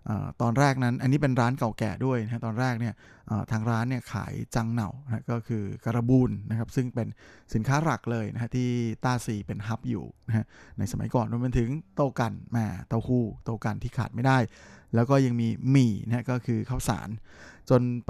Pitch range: 110-130 Hz